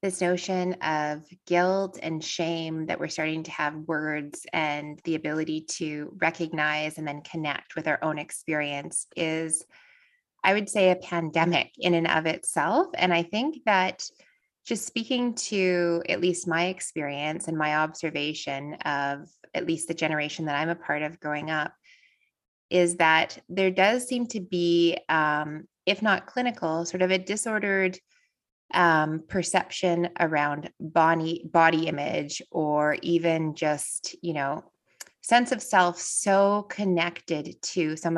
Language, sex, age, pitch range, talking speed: English, female, 20-39, 155-185 Hz, 145 wpm